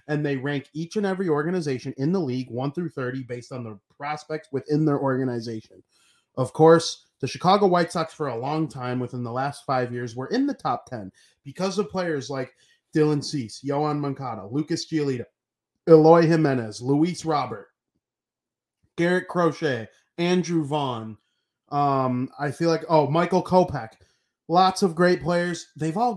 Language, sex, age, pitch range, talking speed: English, male, 30-49, 135-180 Hz, 165 wpm